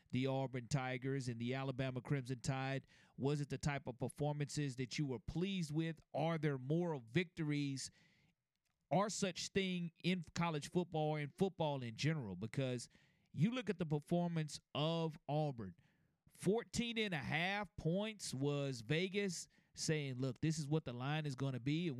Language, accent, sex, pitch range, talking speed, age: English, American, male, 140-180 Hz, 165 wpm, 40-59